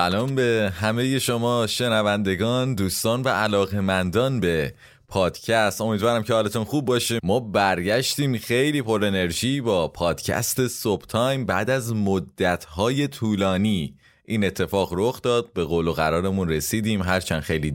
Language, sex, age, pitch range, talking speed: English, male, 30-49, 90-120 Hz, 130 wpm